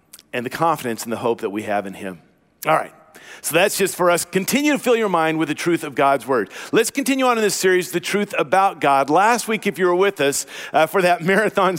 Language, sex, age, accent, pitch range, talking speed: English, male, 50-69, American, 160-215 Hz, 255 wpm